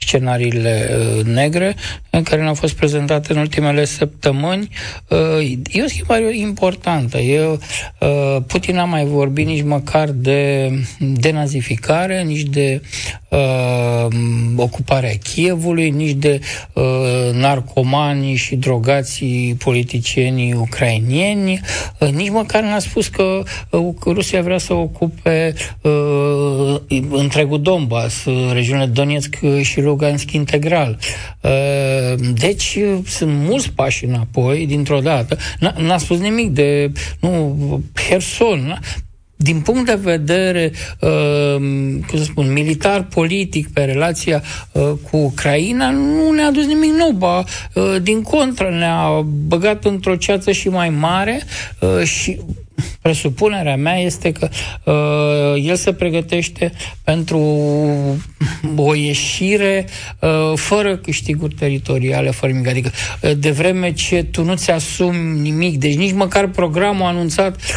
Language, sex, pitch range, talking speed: Romanian, male, 135-175 Hz, 115 wpm